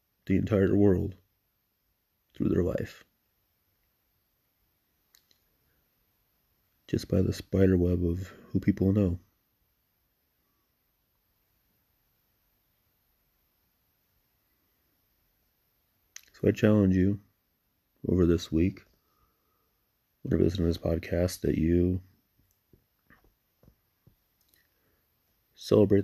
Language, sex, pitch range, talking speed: English, male, 85-100 Hz, 70 wpm